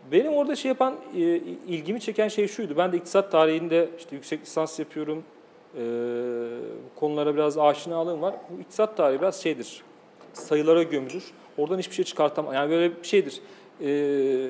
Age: 40-59